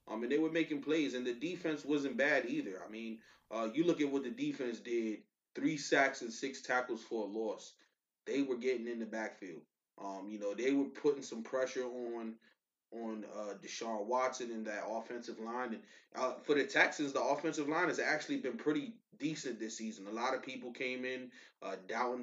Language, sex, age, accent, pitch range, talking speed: English, male, 20-39, American, 115-140 Hz, 210 wpm